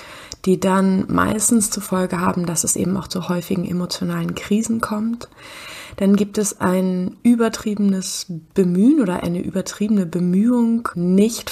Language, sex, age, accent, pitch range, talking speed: German, female, 20-39, German, 175-200 Hz, 135 wpm